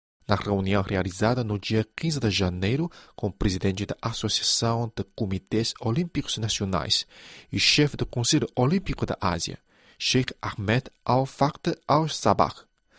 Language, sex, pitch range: Chinese, male, 100-140 Hz